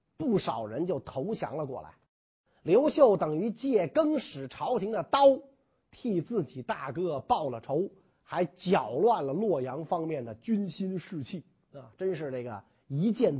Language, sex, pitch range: Chinese, male, 175-265 Hz